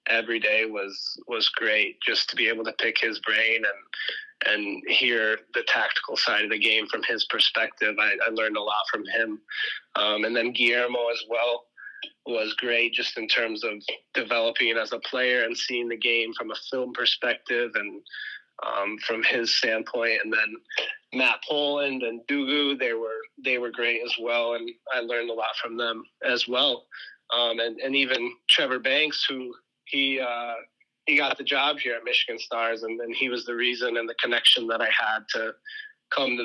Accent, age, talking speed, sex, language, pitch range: American, 20-39, 190 wpm, male, English, 115-145 Hz